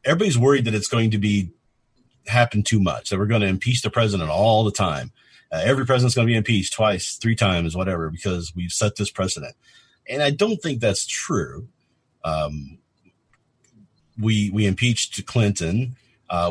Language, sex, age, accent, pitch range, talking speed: English, male, 50-69, American, 90-110 Hz, 175 wpm